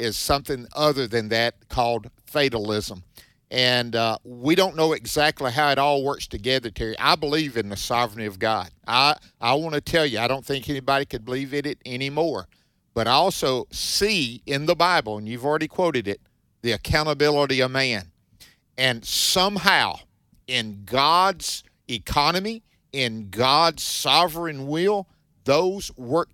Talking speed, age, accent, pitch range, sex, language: 155 wpm, 50-69, American, 120-160 Hz, male, English